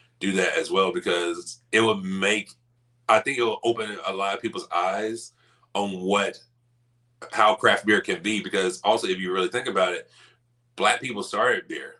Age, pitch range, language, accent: 30-49, 105-120 Hz, English, American